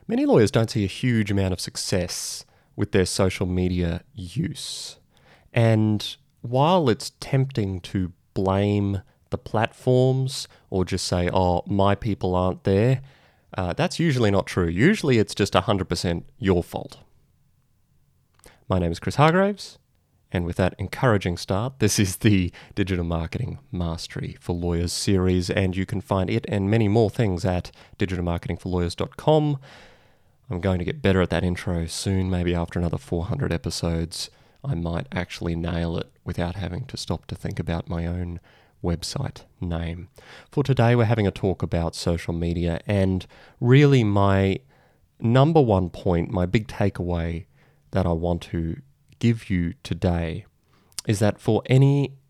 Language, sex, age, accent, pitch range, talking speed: English, male, 30-49, Australian, 85-115 Hz, 150 wpm